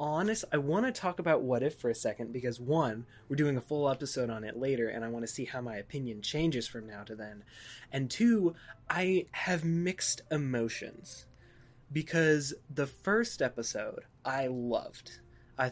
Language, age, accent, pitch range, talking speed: English, 20-39, American, 120-155 Hz, 180 wpm